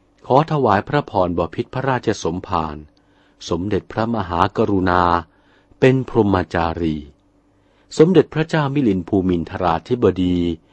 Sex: male